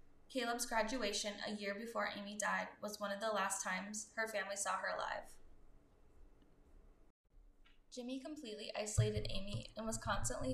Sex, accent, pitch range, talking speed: female, American, 200-230 Hz, 140 wpm